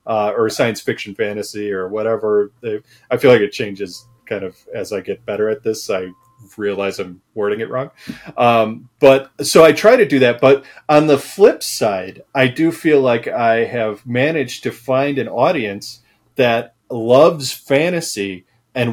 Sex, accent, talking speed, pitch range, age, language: male, American, 170 wpm, 115-145 Hz, 30-49, English